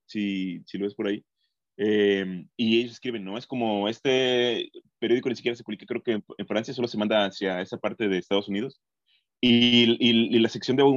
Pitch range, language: 100-120 Hz, Spanish